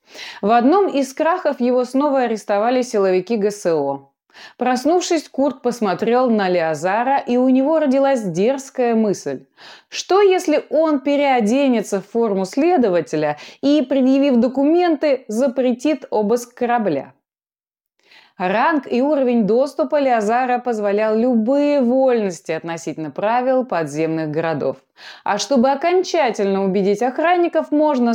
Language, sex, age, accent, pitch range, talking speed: Russian, female, 20-39, native, 205-285 Hz, 110 wpm